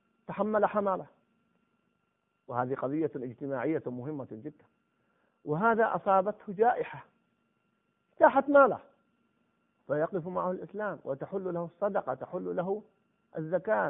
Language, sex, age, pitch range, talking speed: Arabic, male, 50-69, 190-255 Hz, 90 wpm